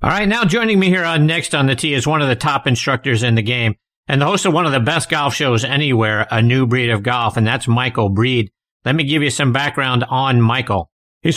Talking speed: 260 wpm